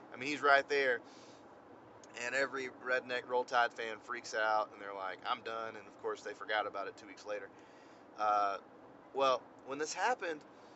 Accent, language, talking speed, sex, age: American, English, 185 wpm, male, 30-49